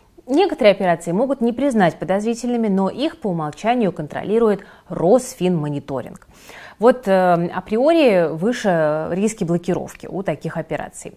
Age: 20-39